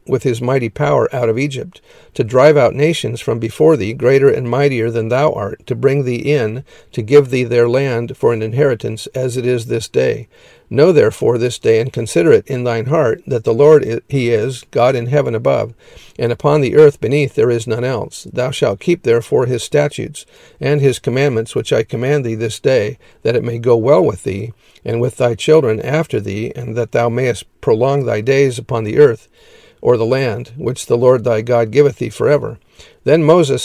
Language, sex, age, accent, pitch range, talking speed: English, male, 50-69, American, 115-145 Hz, 210 wpm